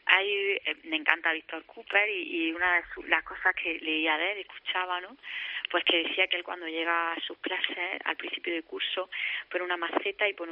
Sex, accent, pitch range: female, Spanish, 160-230 Hz